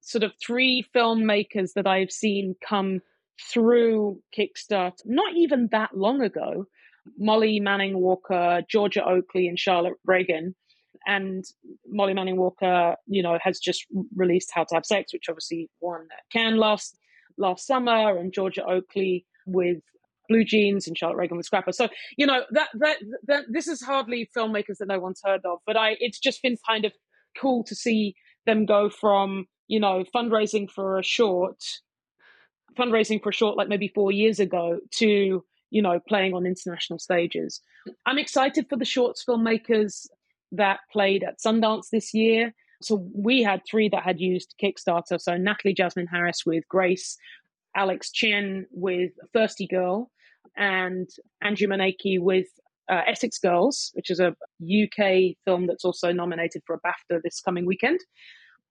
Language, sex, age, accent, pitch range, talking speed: English, female, 30-49, British, 185-225 Hz, 160 wpm